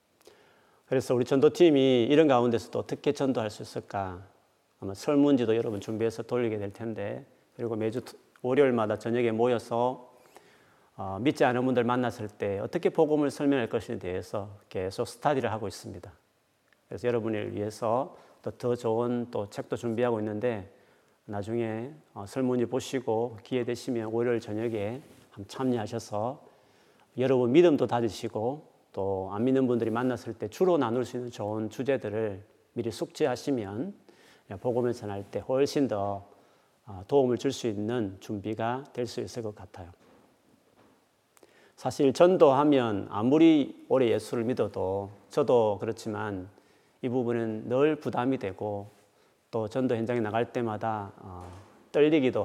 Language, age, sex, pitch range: Korean, 40-59, male, 105-130 Hz